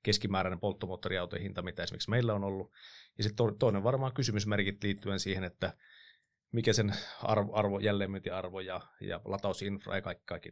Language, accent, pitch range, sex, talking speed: Finnish, native, 95-115 Hz, male, 155 wpm